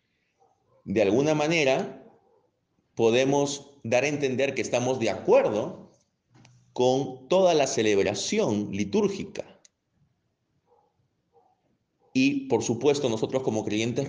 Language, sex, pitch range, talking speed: Spanish, male, 105-140 Hz, 95 wpm